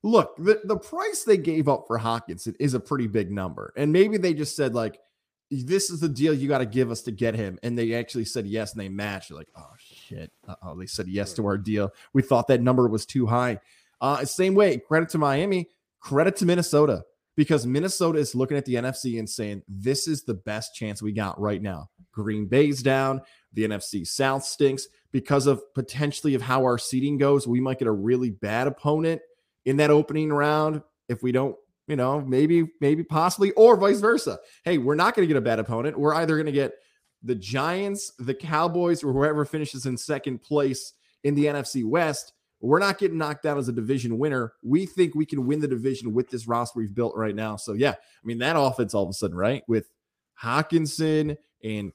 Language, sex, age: English, male, 20-39